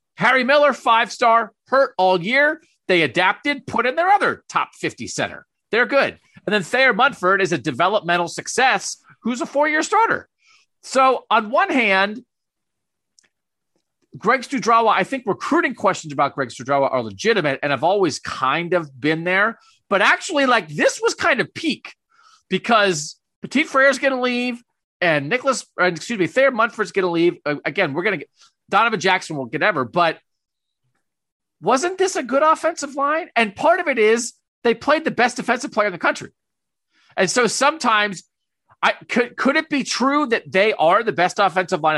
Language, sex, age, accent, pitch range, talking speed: English, male, 40-59, American, 170-265 Hz, 175 wpm